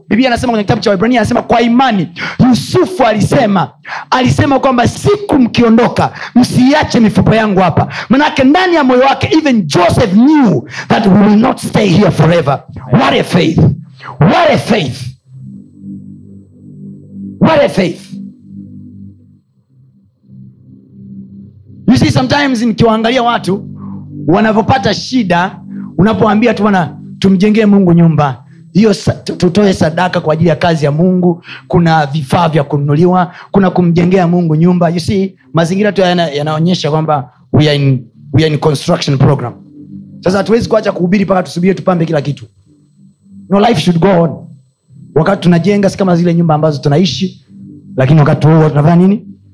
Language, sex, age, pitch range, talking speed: Swahili, male, 50-69, 145-210 Hz, 130 wpm